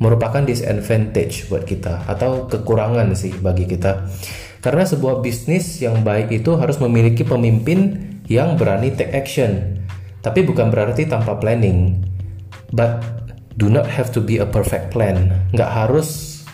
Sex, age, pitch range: male, 20-39, 100-125 Hz